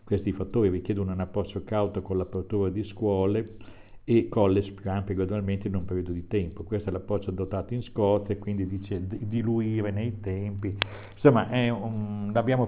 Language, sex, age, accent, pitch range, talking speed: Italian, male, 60-79, native, 95-105 Hz, 170 wpm